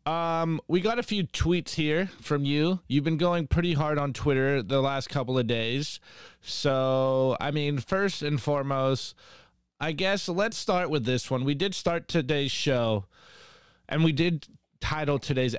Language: English